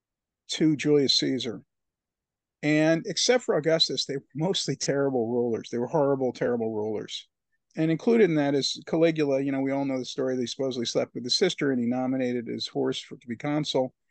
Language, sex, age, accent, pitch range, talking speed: English, male, 40-59, American, 130-165 Hz, 185 wpm